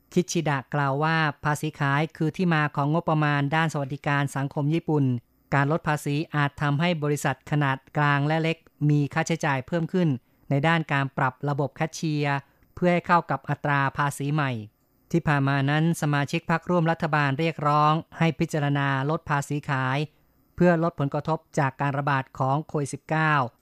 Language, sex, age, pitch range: Thai, female, 20-39, 140-160 Hz